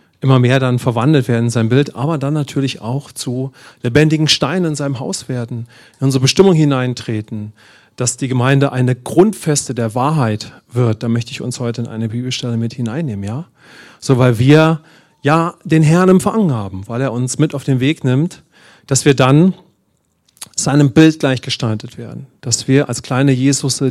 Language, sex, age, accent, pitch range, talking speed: English, male, 40-59, German, 120-150 Hz, 180 wpm